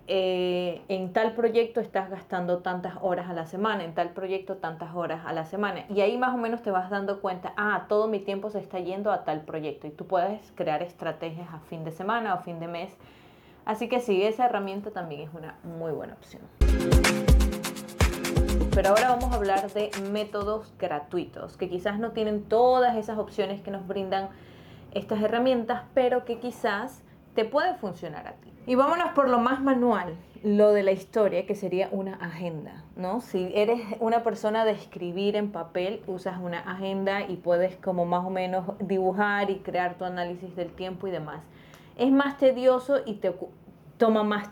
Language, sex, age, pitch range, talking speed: Spanish, female, 20-39, 180-215 Hz, 185 wpm